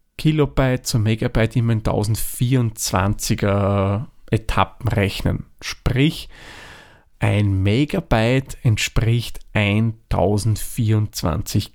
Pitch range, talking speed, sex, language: 105-130 Hz, 70 wpm, male, German